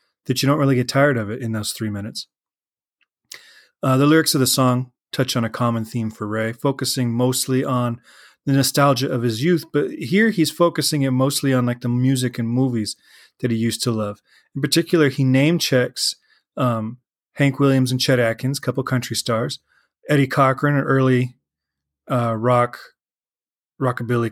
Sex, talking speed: male, 180 wpm